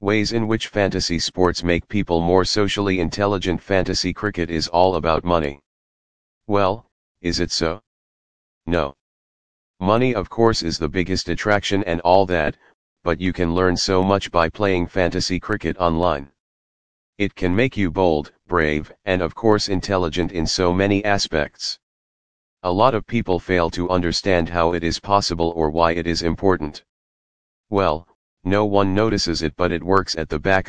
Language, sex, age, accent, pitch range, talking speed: English, male, 40-59, American, 85-100 Hz, 160 wpm